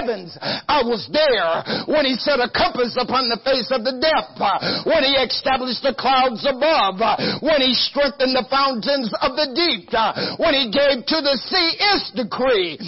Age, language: 50-69, English